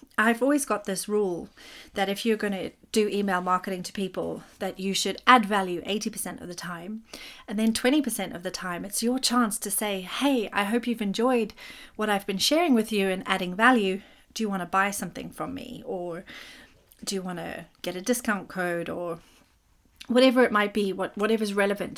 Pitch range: 195-245 Hz